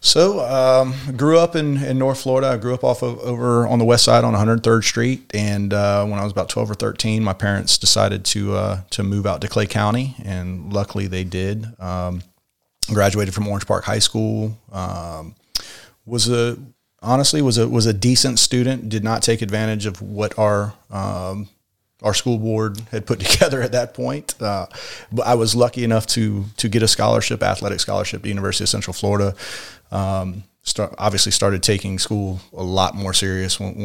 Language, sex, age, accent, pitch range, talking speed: English, male, 30-49, American, 100-120 Hz, 190 wpm